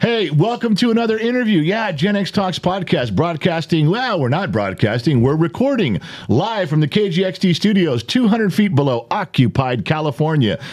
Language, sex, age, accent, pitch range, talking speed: English, male, 50-69, American, 125-200 Hz, 150 wpm